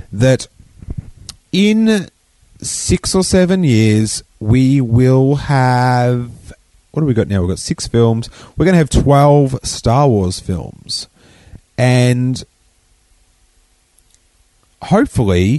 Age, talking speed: 30-49, 110 wpm